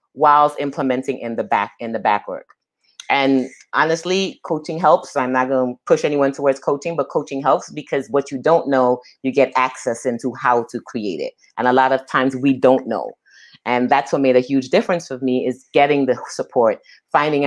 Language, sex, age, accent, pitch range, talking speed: English, female, 30-49, American, 130-155 Hz, 190 wpm